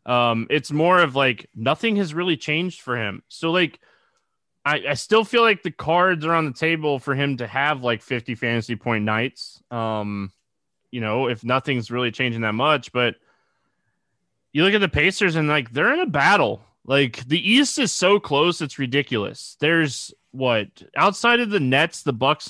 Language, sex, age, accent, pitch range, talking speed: English, male, 20-39, American, 125-170 Hz, 185 wpm